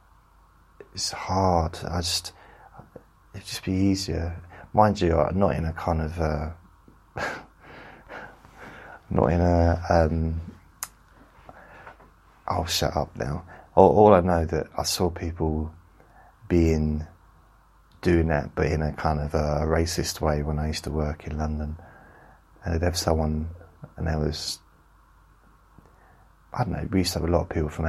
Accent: British